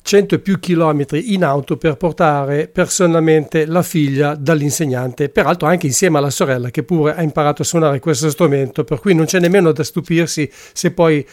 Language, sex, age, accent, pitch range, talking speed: English, male, 50-69, Italian, 145-170 Hz, 180 wpm